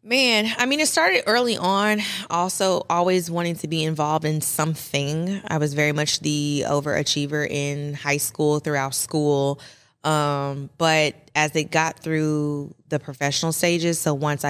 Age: 20-39